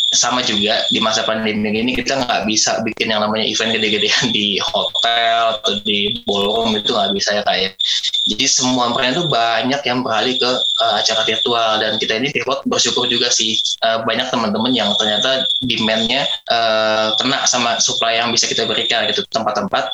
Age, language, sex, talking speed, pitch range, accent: 20-39, Indonesian, male, 175 wpm, 110-125 Hz, native